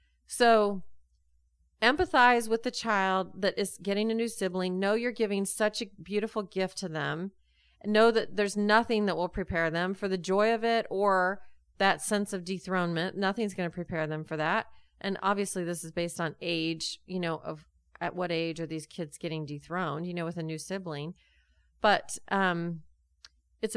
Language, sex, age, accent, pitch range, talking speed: English, female, 30-49, American, 180-235 Hz, 180 wpm